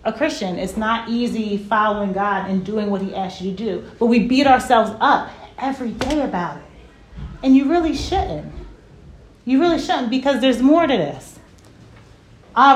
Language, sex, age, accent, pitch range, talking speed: English, female, 30-49, American, 220-265 Hz, 175 wpm